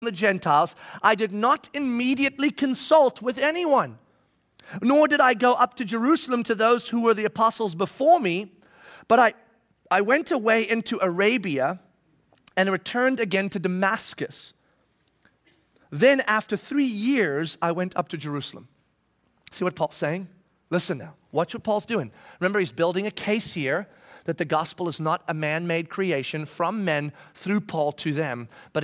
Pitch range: 180-265 Hz